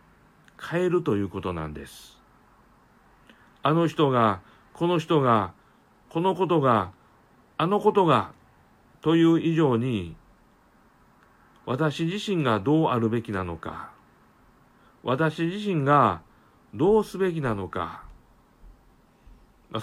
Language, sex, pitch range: Japanese, male, 110-155 Hz